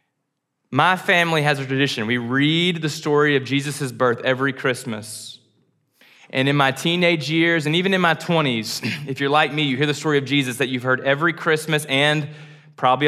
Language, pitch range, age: English, 135-195 Hz, 20-39